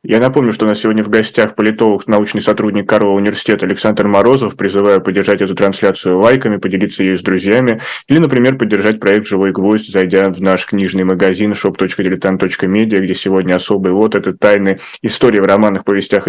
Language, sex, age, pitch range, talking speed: Russian, male, 20-39, 100-115 Hz, 170 wpm